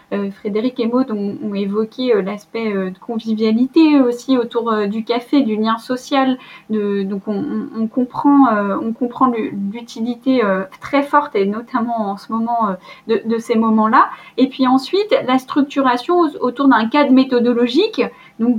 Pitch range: 220-265 Hz